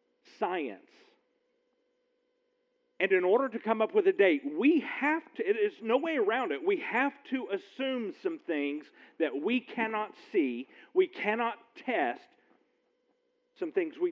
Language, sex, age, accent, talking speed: English, male, 50-69, American, 150 wpm